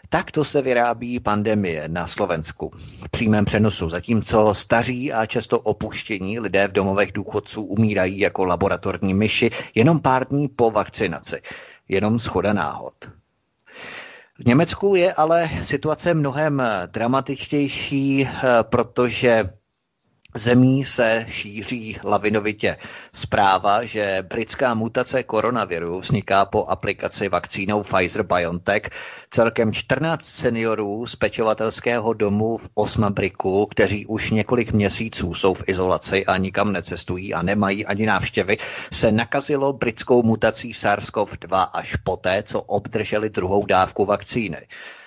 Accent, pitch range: native, 100-120 Hz